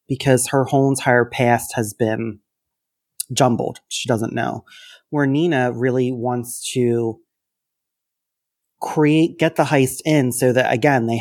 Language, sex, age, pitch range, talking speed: English, male, 30-49, 120-140 Hz, 135 wpm